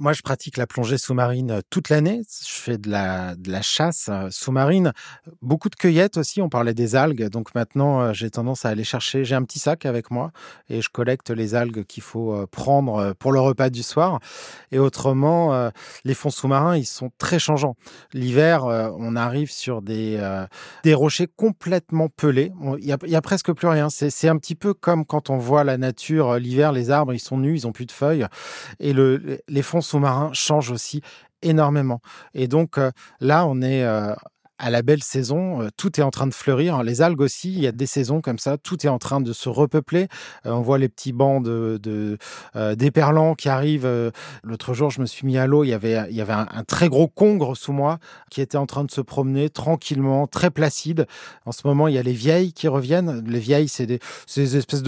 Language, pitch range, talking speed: French, 120-150 Hz, 220 wpm